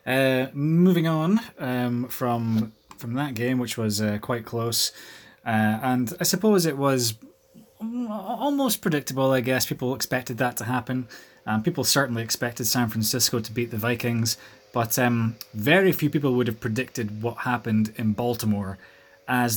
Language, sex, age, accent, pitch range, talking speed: English, male, 20-39, British, 110-135 Hz, 155 wpm